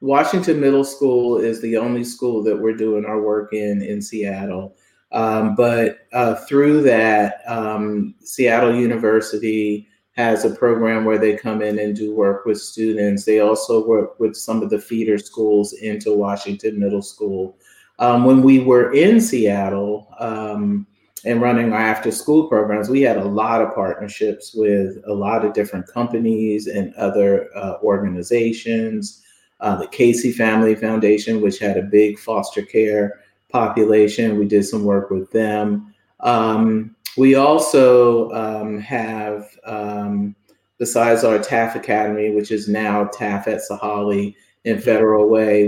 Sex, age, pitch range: male, 30-49, 105-115 Hz